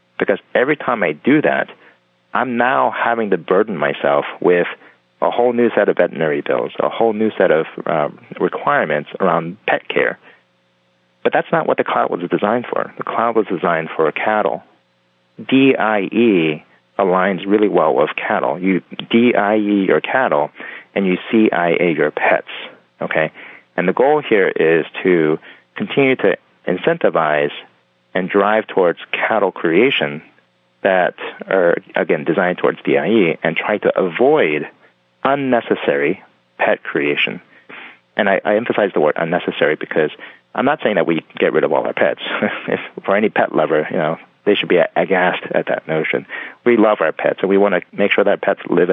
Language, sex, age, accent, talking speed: English, male, 40-59, American, 165 wpm